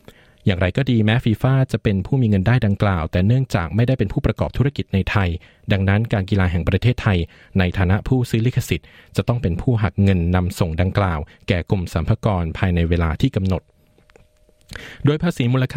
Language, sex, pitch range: Thai, male, 90-120 Hz